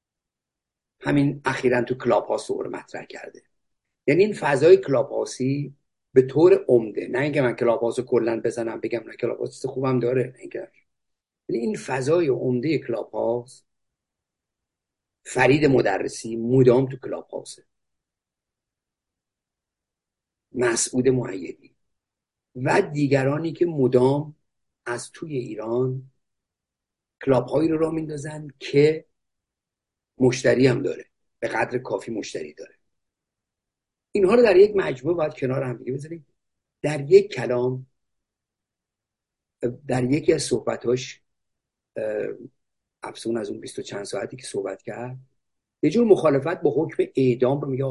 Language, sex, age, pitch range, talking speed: Persian, male, 50-69, 125-170 Hz, 115 wpm